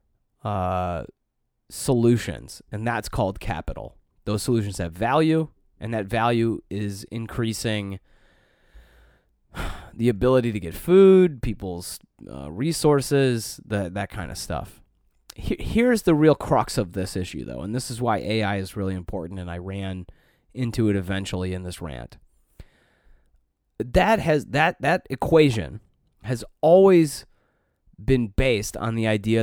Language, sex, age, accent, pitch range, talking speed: English, male, 30-49, American, 95-130 Hz, 135 wpm